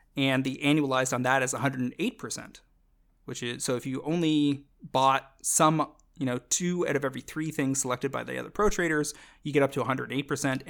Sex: male